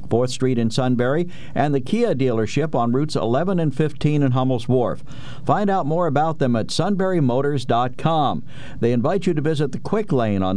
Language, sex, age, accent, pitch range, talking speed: English, male, 50-69, American, 125-155 Hz, 180 wpm